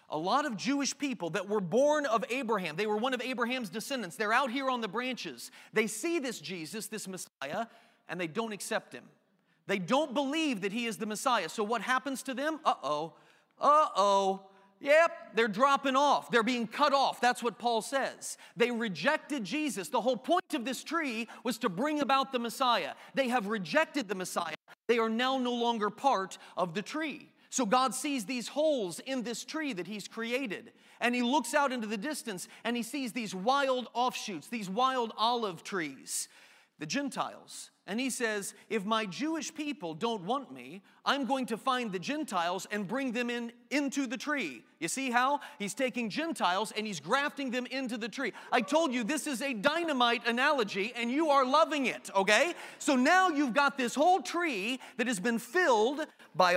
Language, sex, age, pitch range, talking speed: English, male, 40-59, 220-275 Hz, 195 wpm